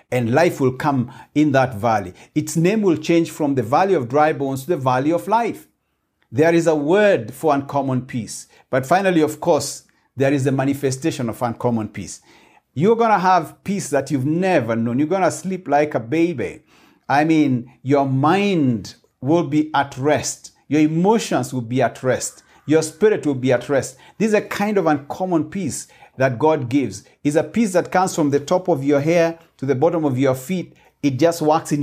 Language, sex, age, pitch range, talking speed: English, male, 50-69, 130-165 Hz, 200 wpm